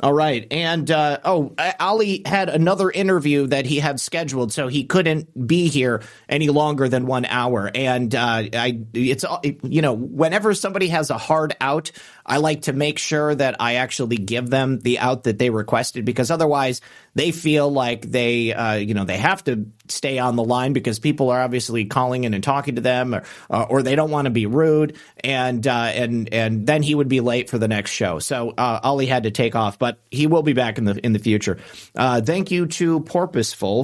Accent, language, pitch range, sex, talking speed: American, English, 120-160 Hz, male, 215 wpm